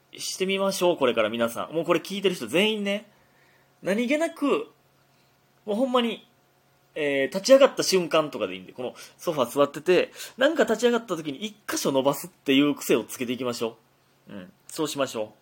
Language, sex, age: Japanese, male, 20-39